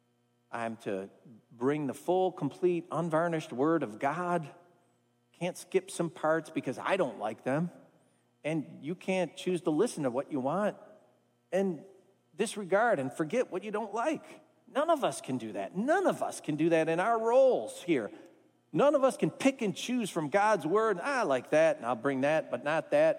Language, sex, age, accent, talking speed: English, male, 40-59, American, 190 wpm